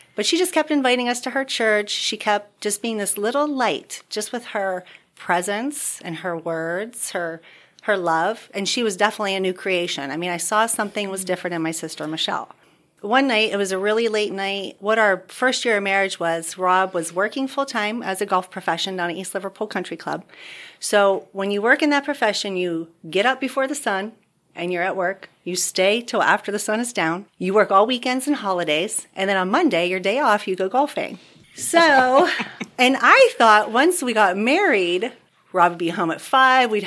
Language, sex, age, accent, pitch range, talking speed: English, female, 40-59, American, 185-255 Hz, 210 wpm